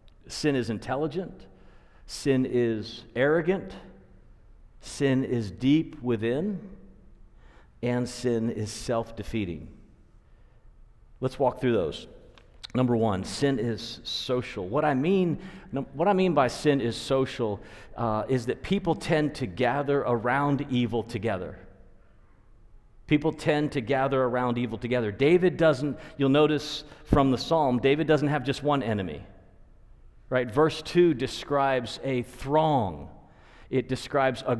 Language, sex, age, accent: English, male, 50-69, American